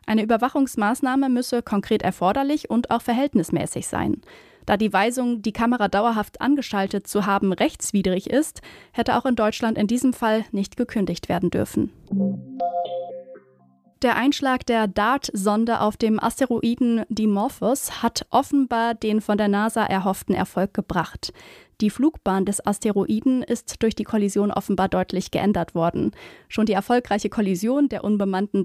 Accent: German